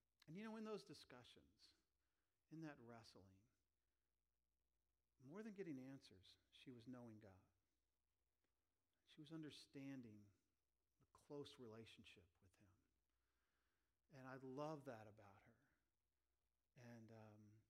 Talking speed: 110 wpm